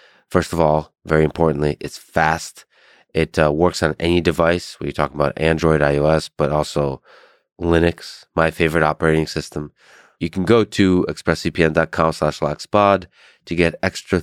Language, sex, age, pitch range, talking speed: English, male, 20-39, 75-90 Hz, 150 wpm